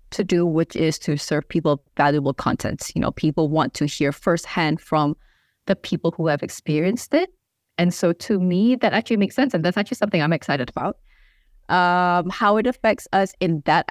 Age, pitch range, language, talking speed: 20-39, 150-180 Hz, English, 195 wpm